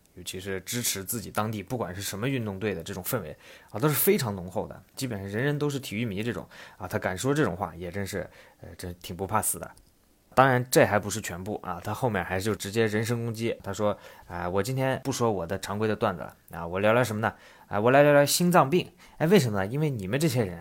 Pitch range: 100-125 Hz